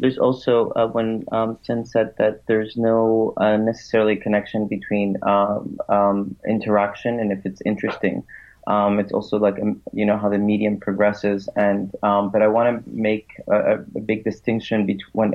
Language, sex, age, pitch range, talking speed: English, male, 30-49, 105-110 Hz, 170 wpm